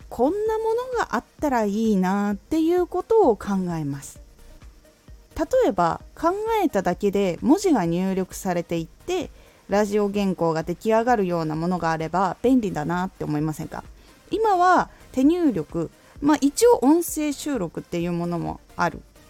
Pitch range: 170-275 Hz